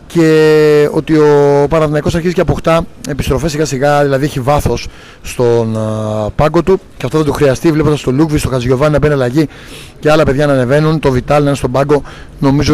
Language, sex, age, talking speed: Greek, male, 30-49, 190 wpm